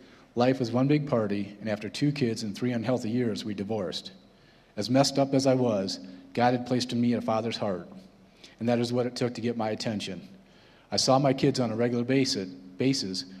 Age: 40-59